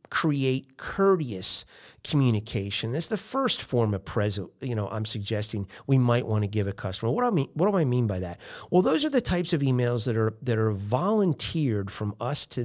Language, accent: English, American